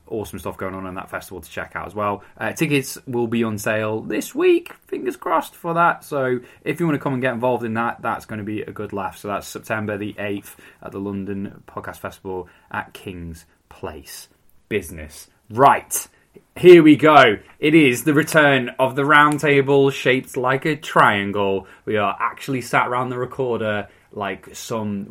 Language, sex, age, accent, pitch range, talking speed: English, male, 20-39, British, 100-140 Hz, 195 wpm